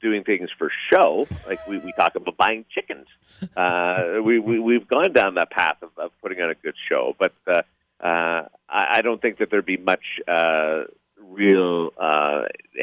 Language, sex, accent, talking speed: English, male, American, 185 wpm